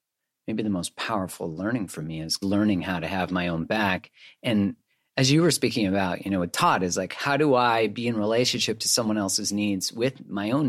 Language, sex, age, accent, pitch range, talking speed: English, male, 30-49, American, 90-110 Hz, 220 wpm